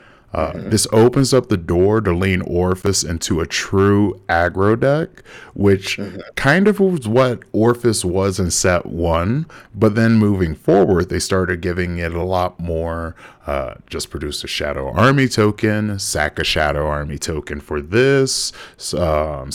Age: 30-49